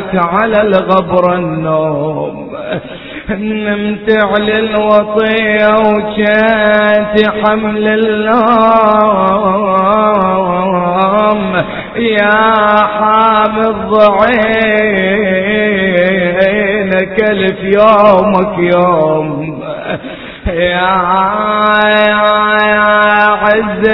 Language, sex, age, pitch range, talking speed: Arabic, male, 30-49, 195-225 Hz, 45 wpm